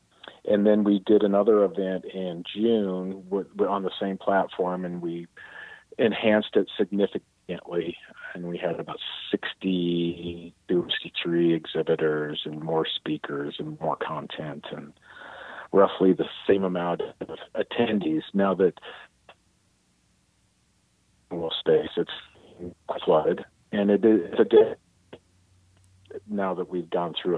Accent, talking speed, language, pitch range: American, 125 wpm, English, 85-95 Hz